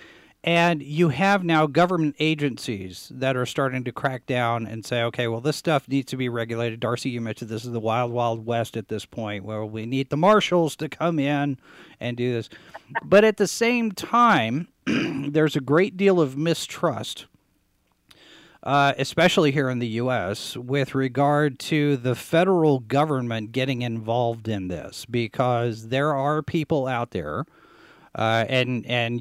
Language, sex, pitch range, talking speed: English, male, 115-150 Hz, 165 wpm